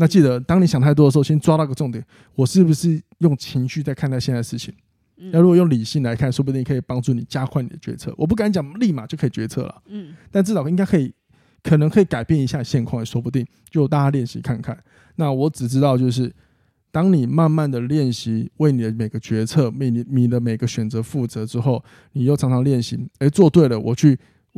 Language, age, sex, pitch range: Chinese, 20-39, male, 120-155 Hz